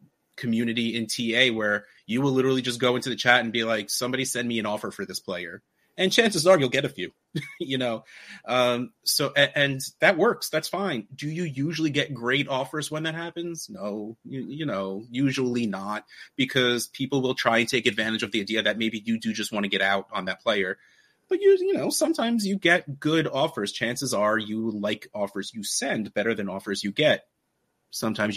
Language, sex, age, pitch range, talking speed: English, male, 30-49, 110-140 Hz, 210 wpm